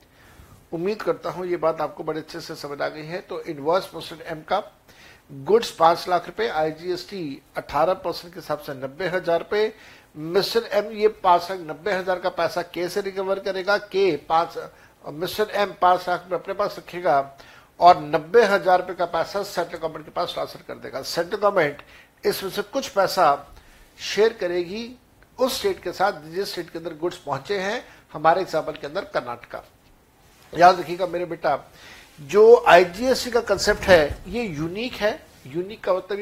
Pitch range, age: 165-200 Hz, 60-79